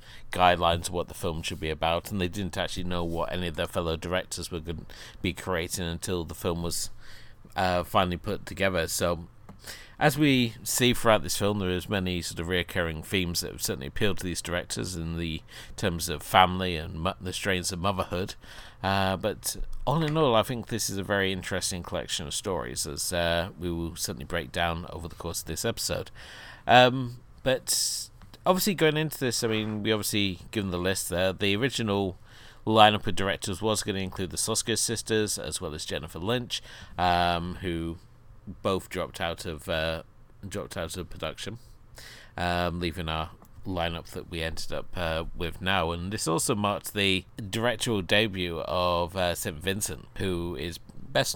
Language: English